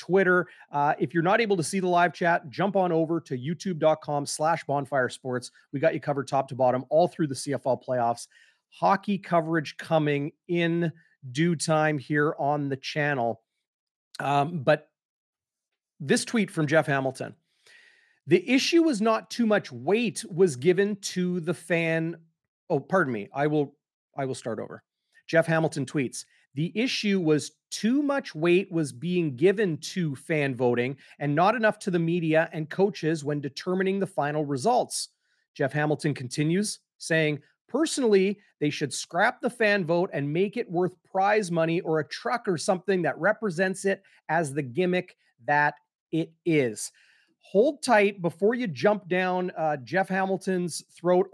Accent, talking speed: American, 160 wpm